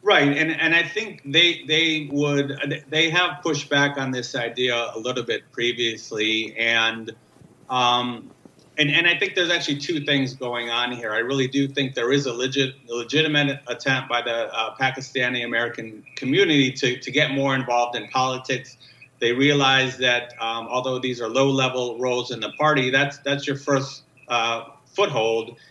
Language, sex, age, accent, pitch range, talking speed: English, male, 30-49, American, 120-145 Hz, 175 wpm